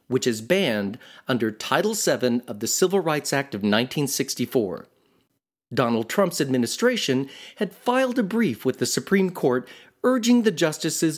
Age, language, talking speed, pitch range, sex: 40-59, English, 145 wpm, 125-195 Hz, male